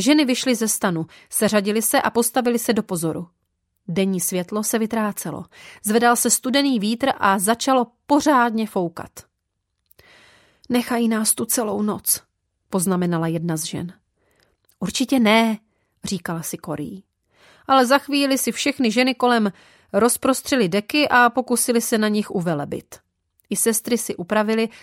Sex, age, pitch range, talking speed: female, 30-49, 190-250 Hz, 135 wpm